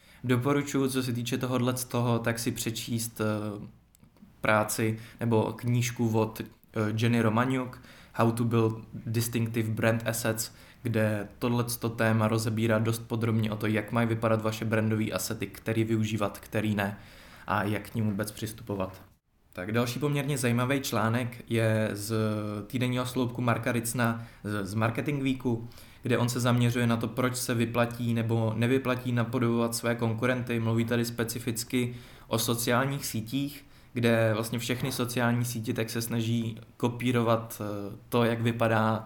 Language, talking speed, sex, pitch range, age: Czech, 135 wpm, male, 110-120 Hz, 20-39